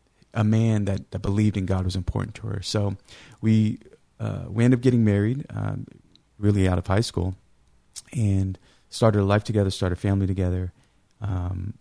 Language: English